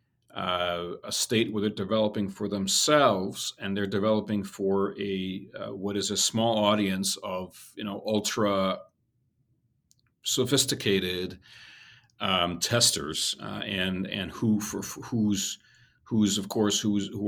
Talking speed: 130 wpm